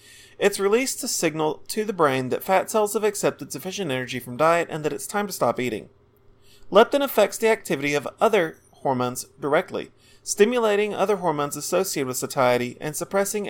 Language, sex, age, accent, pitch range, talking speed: English, male, 30-49, American, 125-190 Hz, 175 wpm